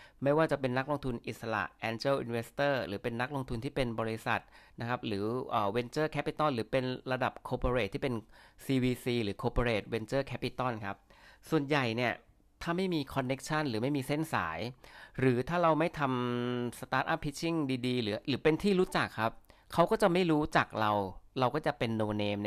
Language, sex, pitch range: Thai, male, 115-145 Hz